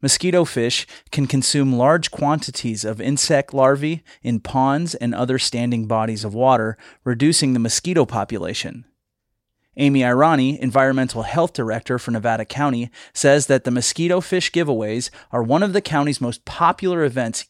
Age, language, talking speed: 30-49, English, 145 wpm